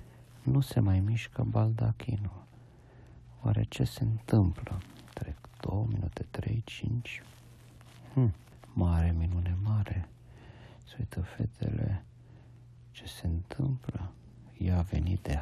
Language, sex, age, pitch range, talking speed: Romanian, male, 50-69, 95-120 Hz, 105 wpm